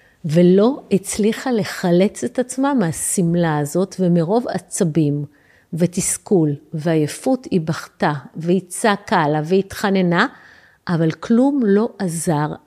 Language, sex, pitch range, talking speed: Hebrew, female, 165-225 Hz, 100 wpm